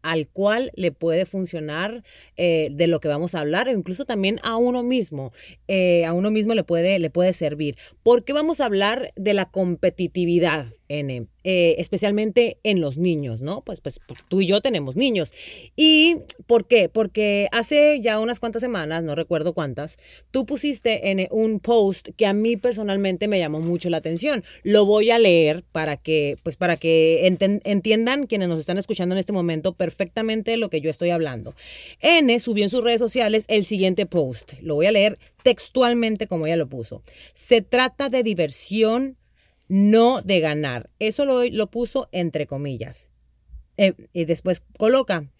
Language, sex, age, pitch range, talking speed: Spanish, female, 30-49, 165-220 Hz, 175 wpm